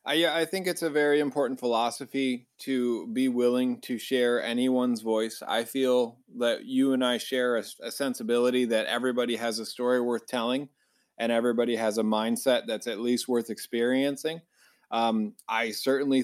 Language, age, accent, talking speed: English, 20-39, American, 165 wpm